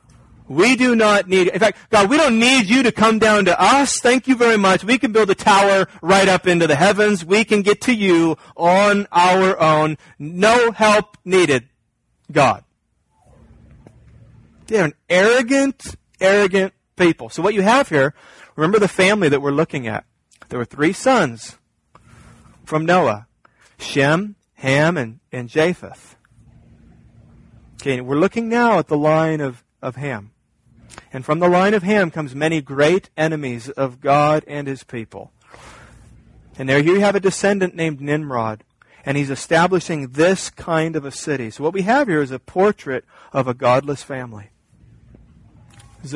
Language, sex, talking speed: English, male, 160 wpm